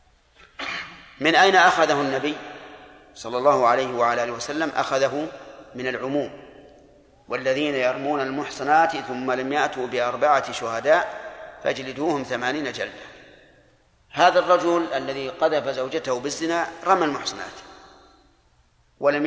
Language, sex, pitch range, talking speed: Arabic, male, 130-155 Hz, 105 wpm